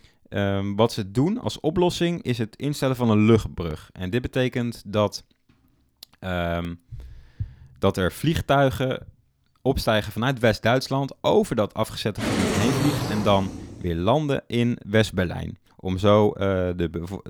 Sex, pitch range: male, 95-115 Hz